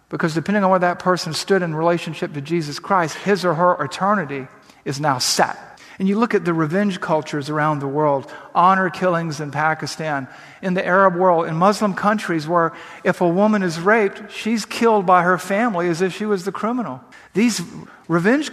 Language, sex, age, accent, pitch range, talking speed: English, male, 50-69, American, 165-200 Hz, 190 wpm